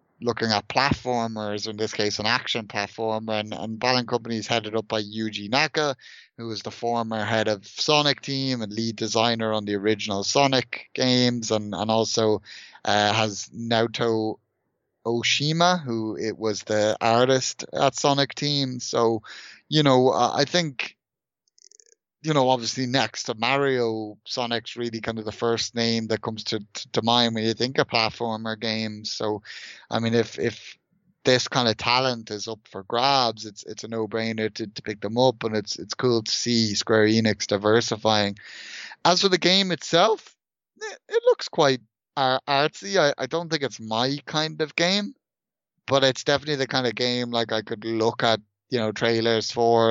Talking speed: 180 wpm